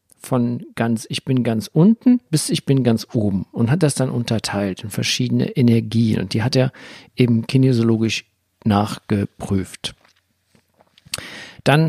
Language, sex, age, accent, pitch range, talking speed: German, male, 50-69, German, 120-145 Hz, 135 wpm